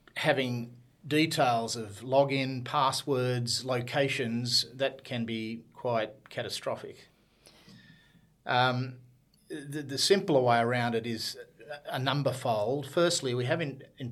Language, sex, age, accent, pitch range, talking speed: English, male, 40-59, Australian, 120-145 Hz, 115 wpm